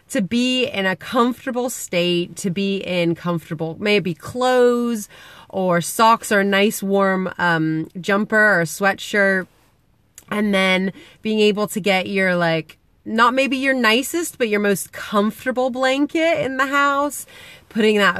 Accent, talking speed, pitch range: American, 145 wpm, 175-220 Hz